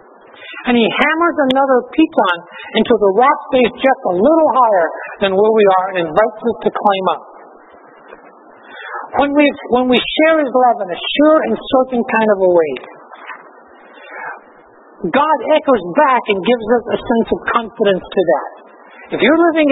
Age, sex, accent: 60-79, male, American